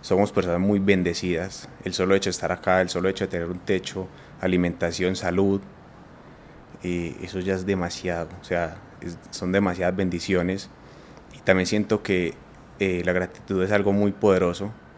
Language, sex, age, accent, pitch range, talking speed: Spanish, male, 20-39, Colombian, 90-100 Hz, 165 wpm